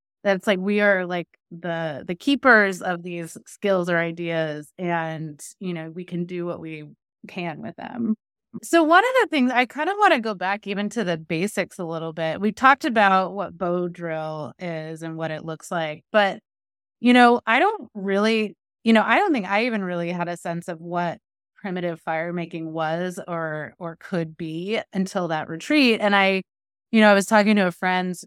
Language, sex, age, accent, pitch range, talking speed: English, female, 20-39, American, 165-210 Hz, 200 wpm